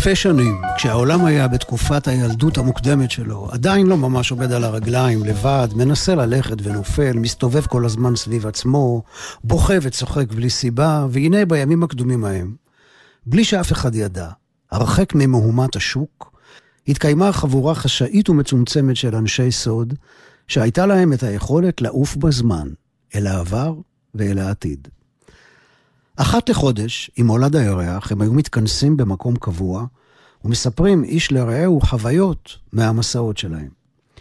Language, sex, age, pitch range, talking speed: Hebrew, male, 50-69, 115-165 Hz, 125 wpm